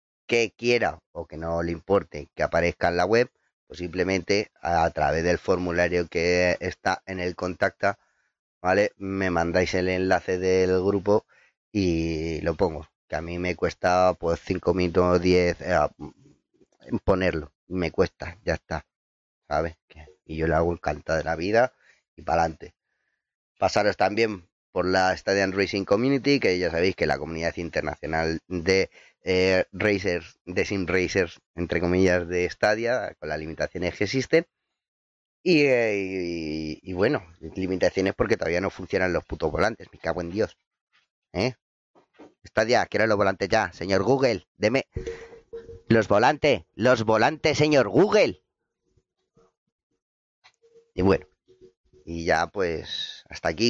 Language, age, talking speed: Spanish, 30-49, 145 wpm